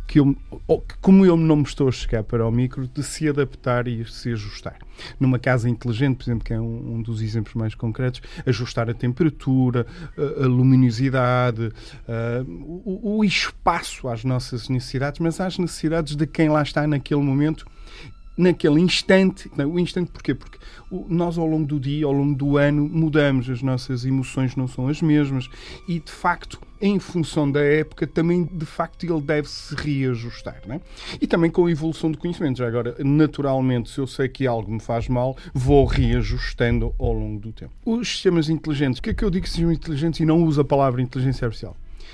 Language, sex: Portuguese, male